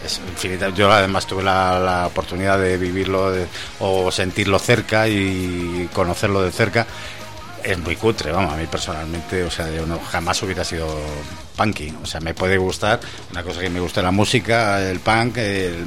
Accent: Spanish